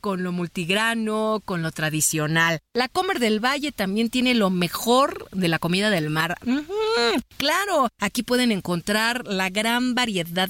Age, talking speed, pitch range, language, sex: 40-59, 155 wpm, 175-230 Hz, Spanish, female